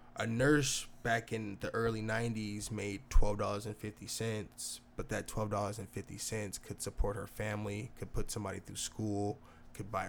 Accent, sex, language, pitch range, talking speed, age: American, male, English, 110-130 Hz, 170 wpm, 20-39